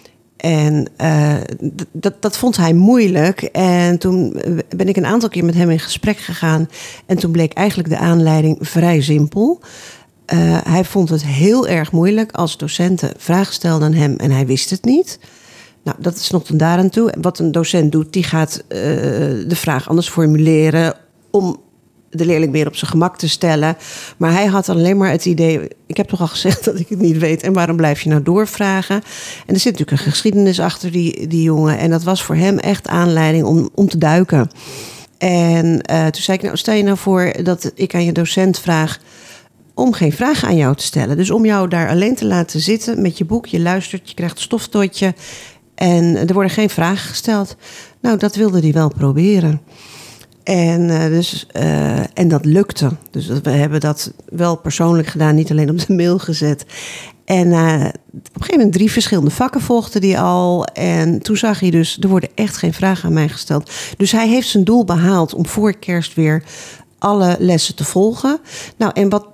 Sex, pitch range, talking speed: female, 155-195 Hz, 195 wpm